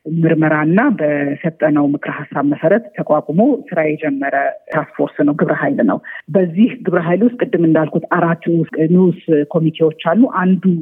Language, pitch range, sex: Amharic, 150-175 Hz, female